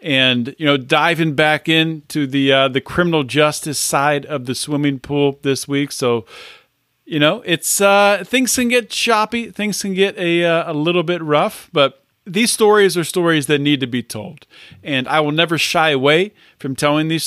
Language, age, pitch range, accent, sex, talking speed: English, 40-59, 130-170 Hz, American, male, 190 wpm